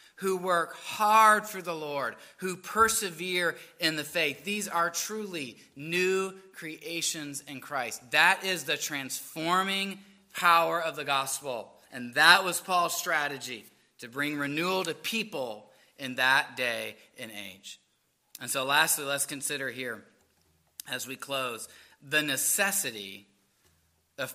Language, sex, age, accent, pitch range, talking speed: English, male, 30-49, American, 145-195 Hz, 130 wpm